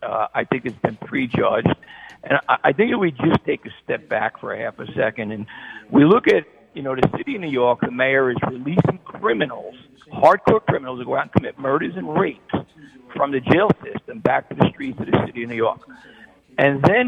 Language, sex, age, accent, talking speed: English, male, 50-69, American, 225 wpm